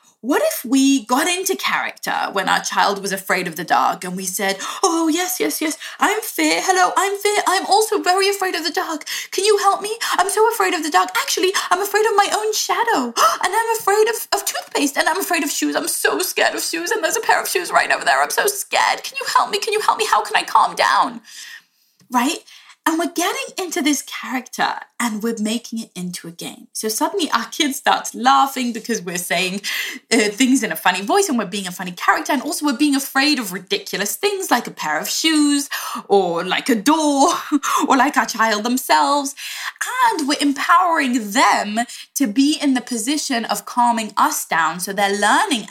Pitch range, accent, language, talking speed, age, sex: 225-370 Hz, British, English, 215 wpm, 20-39, female